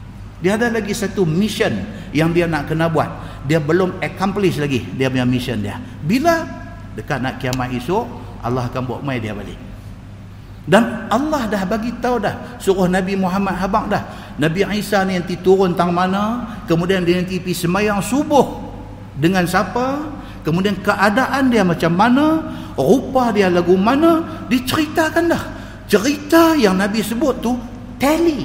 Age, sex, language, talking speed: 50-69, male, Malay, 150 wpm